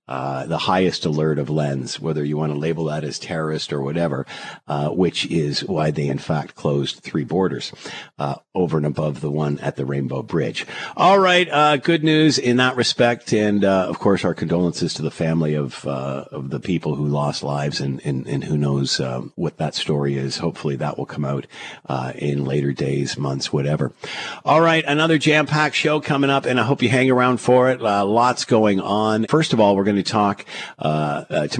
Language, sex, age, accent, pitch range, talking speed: English, male, 50-69, American, 80-110 Hz, 210 wpm